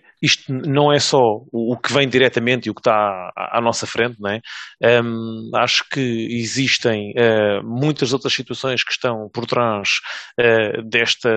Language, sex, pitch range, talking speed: English, male, 110-125 Hz, 150 wpm